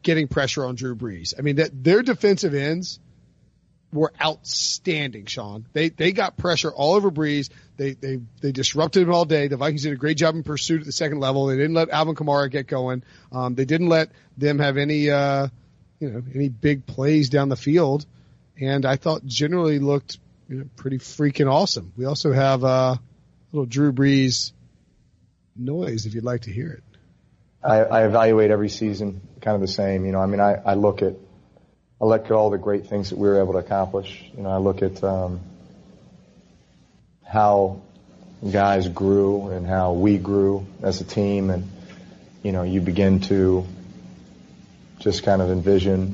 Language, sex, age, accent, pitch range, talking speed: English, male, 30-49, American, 95-145 Hz, 185 wpm